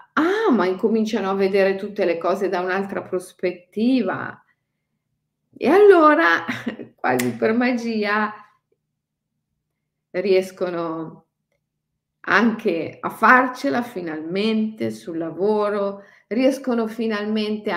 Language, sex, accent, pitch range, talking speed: Italian, female, native, 175-235 Hz, 85 wpm